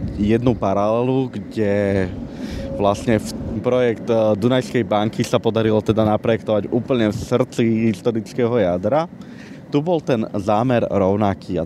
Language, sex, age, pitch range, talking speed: Slovak, male, 20-39, 100-120 Hz, 115 wpm